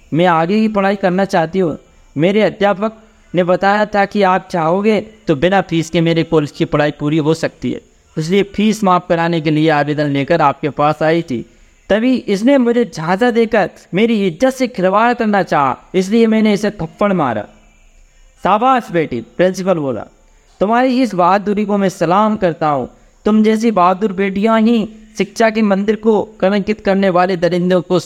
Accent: native